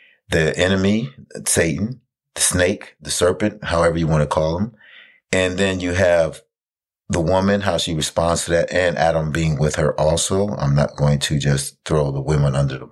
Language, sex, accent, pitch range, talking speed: English, male, American, 70-90 Hz, 175 wpm